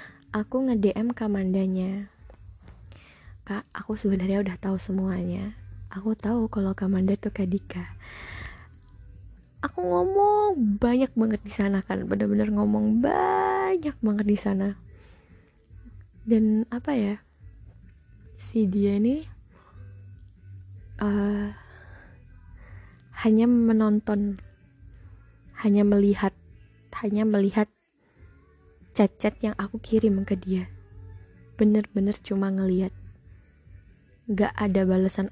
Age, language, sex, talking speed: 20-39, Indonesian, female, 90 wpm